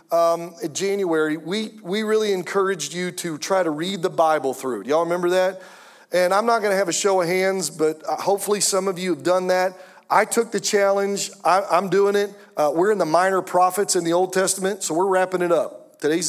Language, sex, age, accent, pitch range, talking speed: English, male, 40-59, American, 175-210 Hz, 220 wpm